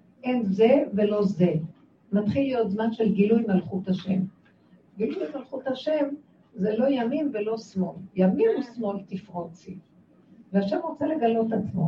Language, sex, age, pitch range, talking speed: Hebrew, female, 50-69, 185-230 Hz, 130 wpm